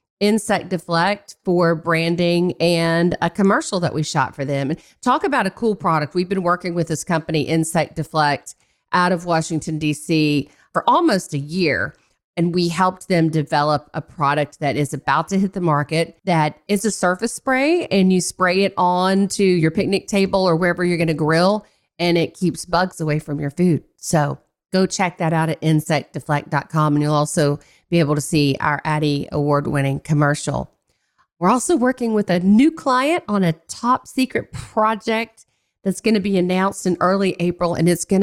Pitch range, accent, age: 150-185 Hz, American, 40-59